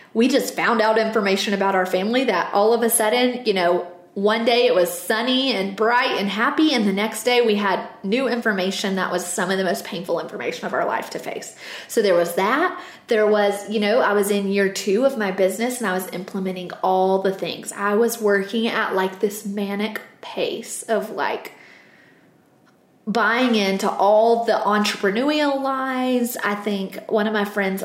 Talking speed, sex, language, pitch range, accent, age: 195 wpm, female, English, 190-230 Hz, American, 30-49